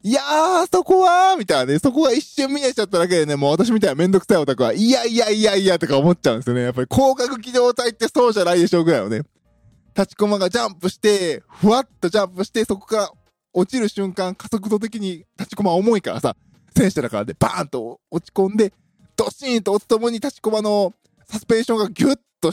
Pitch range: 170-235 Hz